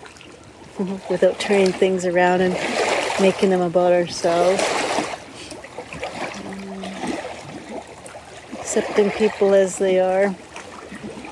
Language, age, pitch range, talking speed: English, 40-59, 180-200 Hz, 80 wpm